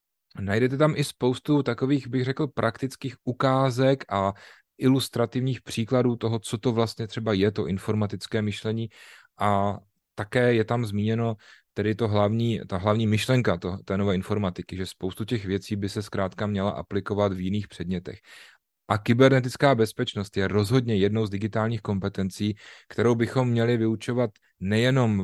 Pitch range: 100-120 Hz